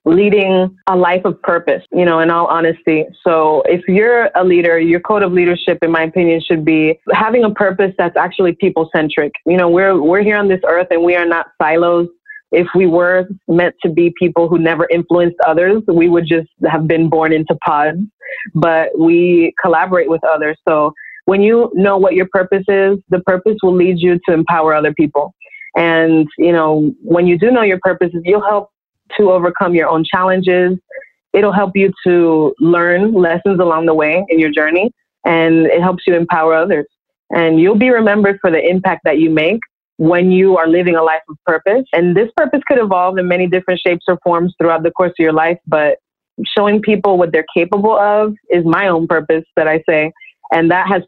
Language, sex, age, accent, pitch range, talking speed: English, female, 20-39, American, 165-195 Hz, 200 wpm